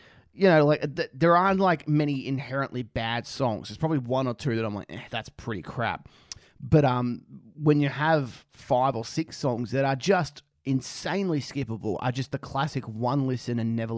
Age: 30-49